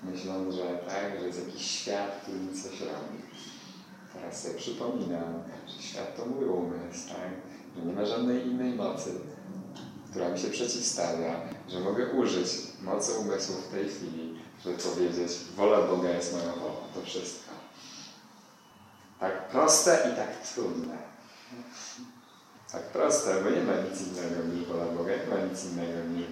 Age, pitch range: 30-49, 85-100 Hz